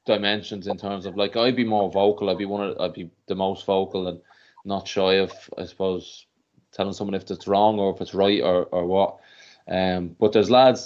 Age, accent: 20-39, Irish